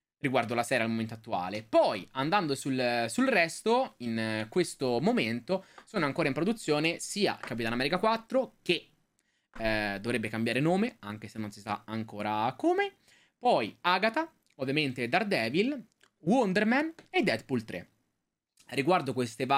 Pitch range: 110-150 Hz